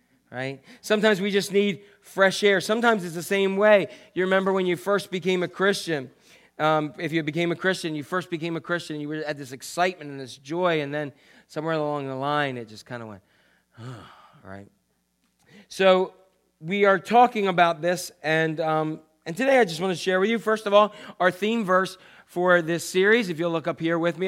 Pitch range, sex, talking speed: 165-205 Hz, male, 210 wpm